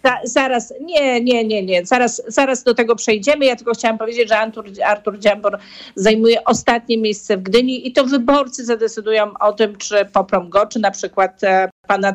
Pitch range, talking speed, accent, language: 195-225 Hz, 185 wpm, native, Polish